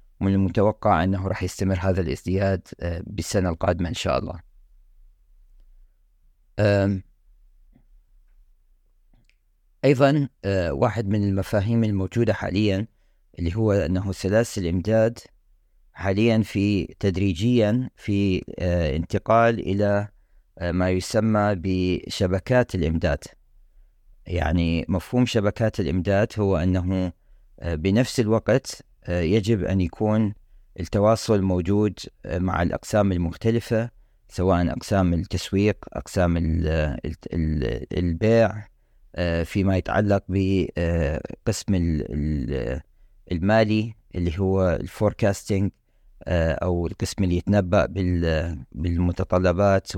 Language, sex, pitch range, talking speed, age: Arabic, male, 90-105 Hz, 85 wpm, 40-59